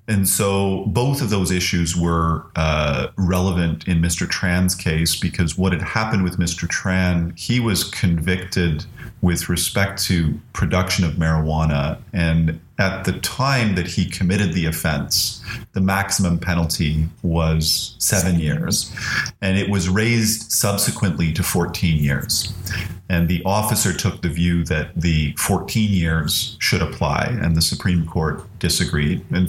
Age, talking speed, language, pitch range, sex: 40-59, 140 wpm, English, 80-95 Hz, male